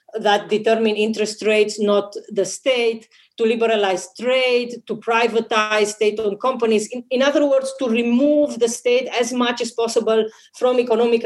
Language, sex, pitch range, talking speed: English, female, 205-235 Hz, 150 wpm